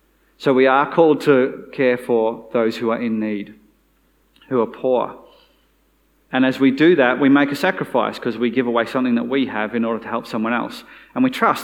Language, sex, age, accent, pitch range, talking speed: English, male, 30-49, Australian, 120-160 Hz, 210 wpm